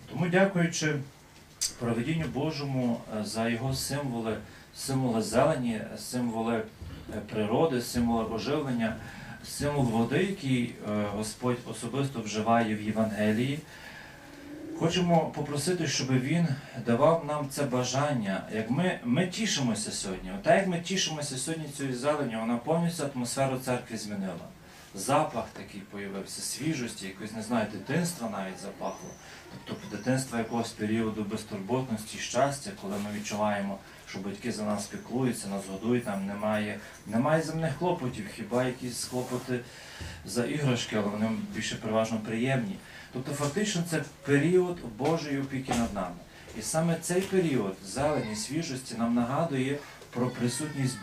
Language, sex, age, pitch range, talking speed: Ukrainian, male, 40-59, 110-150 Hz, 125 wpm